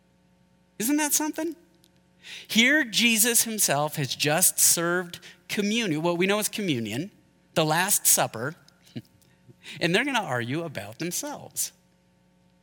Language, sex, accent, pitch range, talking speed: English, male, American, 130-185 Hz, 120 wpm